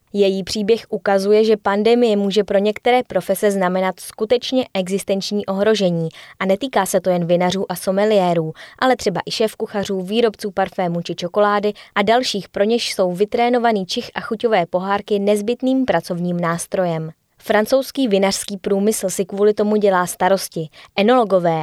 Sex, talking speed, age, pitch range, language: female, 140 wpm, 20-39, 180-220 Hz, Czech